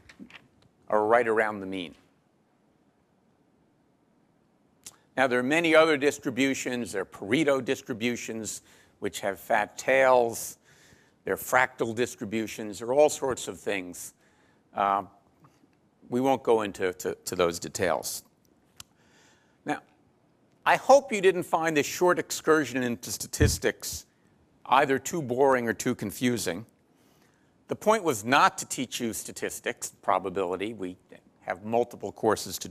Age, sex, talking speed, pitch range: 50-69, male, 125 wpm, 120-165 Hz